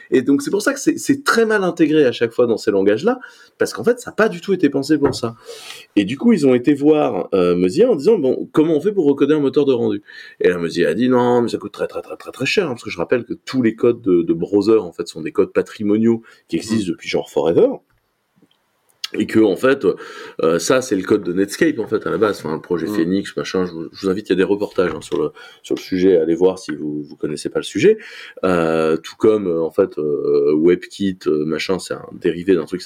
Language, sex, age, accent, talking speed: French, male, 30-49, French, 265 wpm